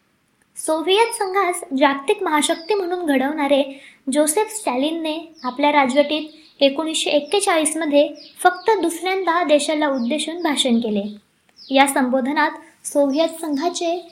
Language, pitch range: Marathi, 280-345 Hz